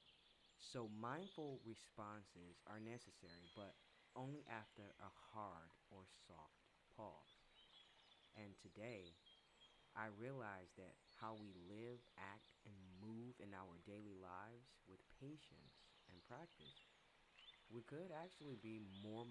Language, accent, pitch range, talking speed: English, American, 95-120 Hz, 115 wpm